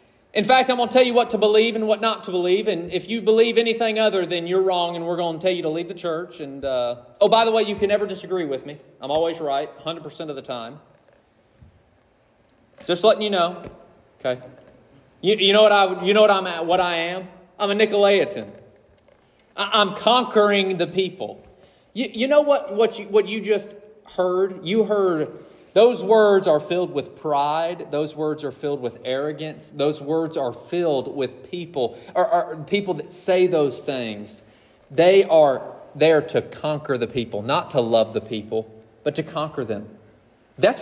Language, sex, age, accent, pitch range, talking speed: English, male, 40-59, American, 150-210 Hz, 195 wpm